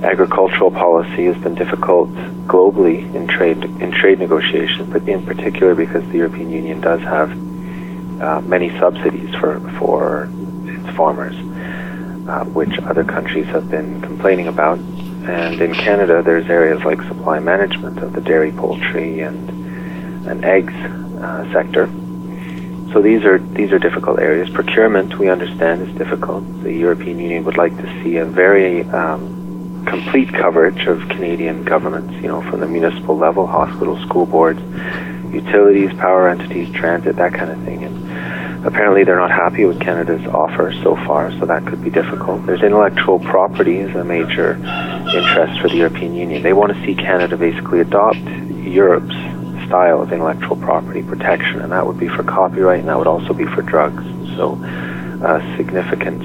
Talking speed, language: 160 wpm, English